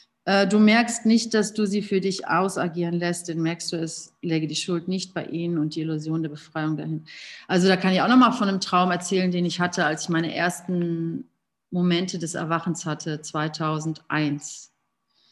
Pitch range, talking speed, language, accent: 170-210 Hz, 190 wpm, German, German